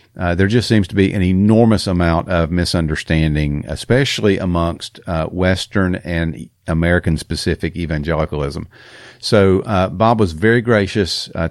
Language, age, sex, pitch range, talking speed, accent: English, 50-69, male, 85-105 Hz, 130 wpm, American